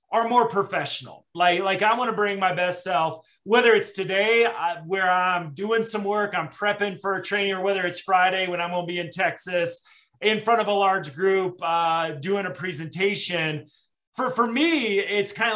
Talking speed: 190 wpm